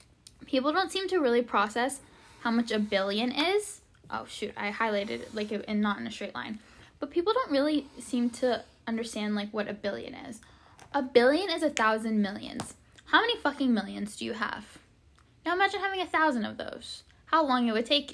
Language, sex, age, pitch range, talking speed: English, female, 10-29, 205-260 Hz, 200 wpm